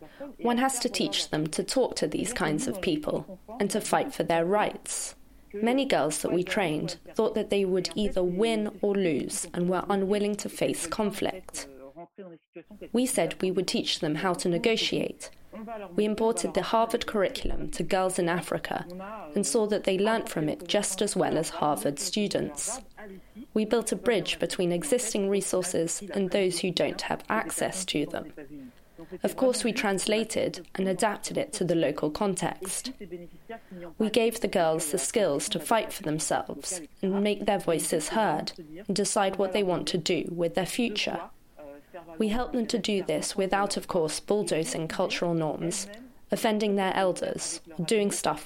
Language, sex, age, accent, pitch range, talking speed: English, female, 20-39, British, 170-215 Hz, 170 wpm